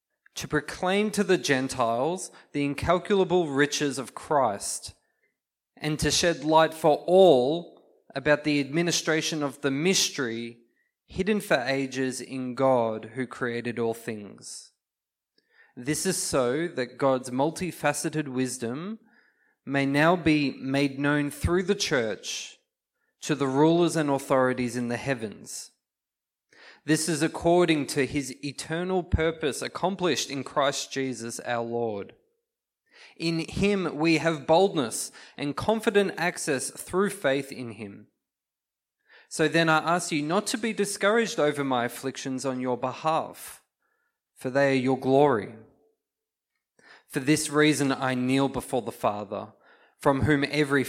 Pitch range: 130-170 Hz